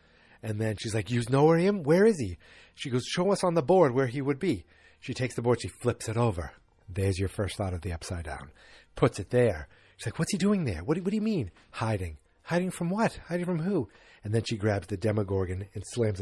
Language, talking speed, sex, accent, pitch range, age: English, 250 wpm, male, American, 95-120 Hz, 30-49